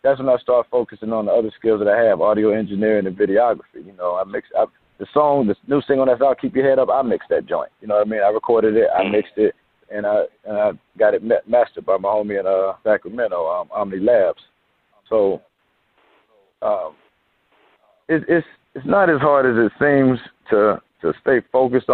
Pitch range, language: 105-135 Hz, English